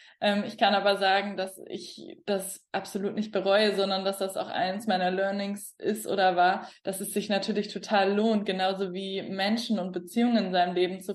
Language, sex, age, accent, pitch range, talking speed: German, female, 20-39, German, 190-215 Hz, 190 wpm